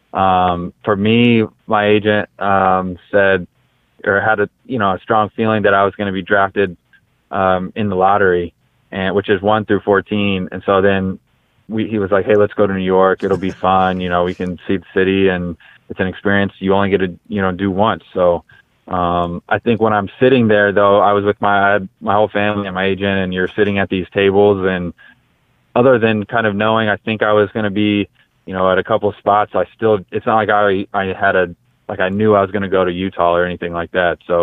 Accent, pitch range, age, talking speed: American, 95-105 Hz, 20-39, 235 wpm